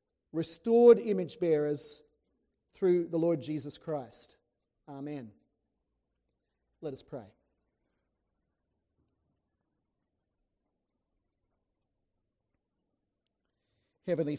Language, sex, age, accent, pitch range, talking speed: English, male, 40-59, Australian, 145-175 Hz, 55 wpm